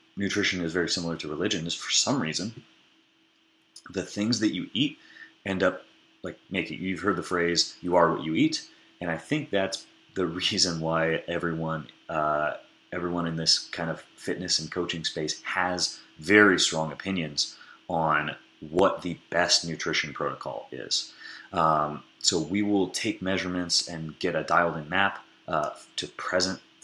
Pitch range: 85-100 Hz